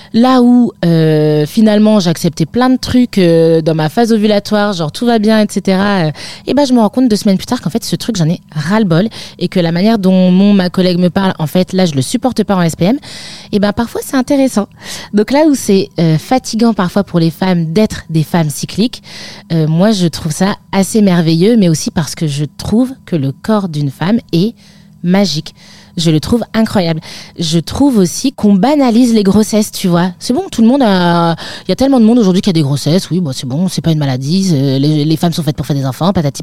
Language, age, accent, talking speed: French, 20-39, French, 235 wpm